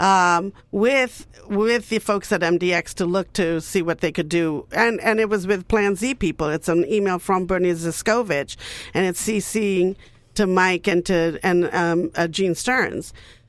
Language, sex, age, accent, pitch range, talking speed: English, female, 50-69, American, 180-250 Hz, 180 wpm